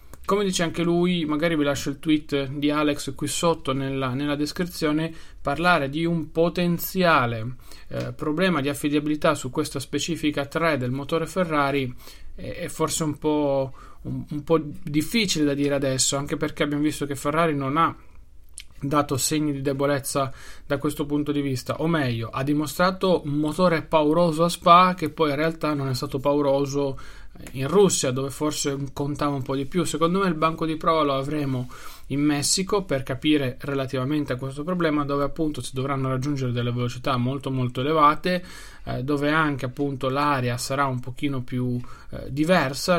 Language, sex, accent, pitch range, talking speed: Italian, male, native, 135-155 Hz, 170 wpm